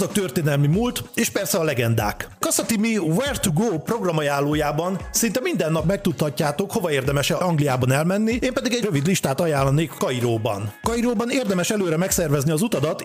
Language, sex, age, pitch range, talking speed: Hungarian, male, 40-59, 145-190 Hz, 155 wpm